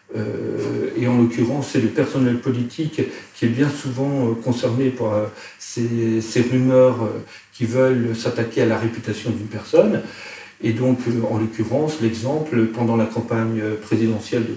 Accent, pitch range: French, 115-145 Hz